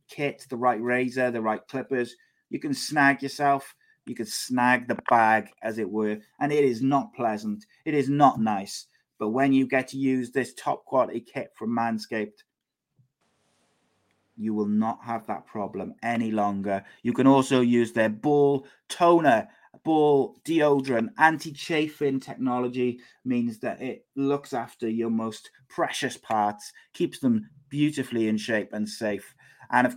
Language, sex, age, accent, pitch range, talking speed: English, male, 30-49, British, 115-140 Hz, 155 wpm